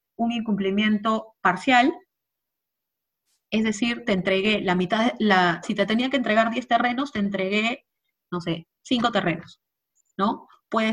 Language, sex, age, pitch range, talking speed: Spanish, female, 30-49, 190-240 Hz, 130 wpm